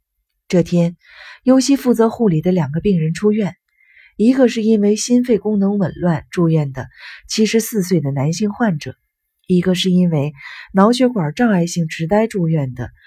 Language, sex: Chinese, female